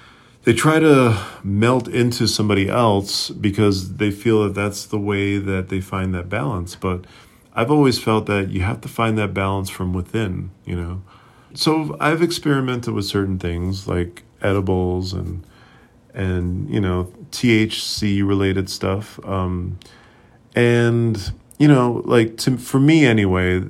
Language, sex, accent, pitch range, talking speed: English, male, American, 95-115 Hz, 145 wpm